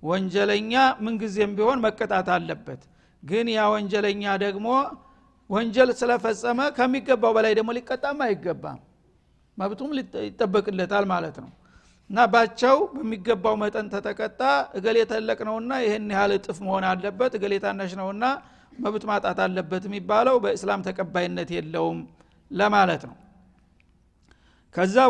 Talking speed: 110 wpm